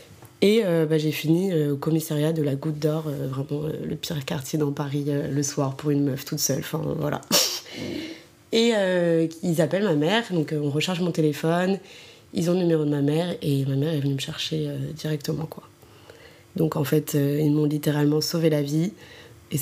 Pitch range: 145-160 Hz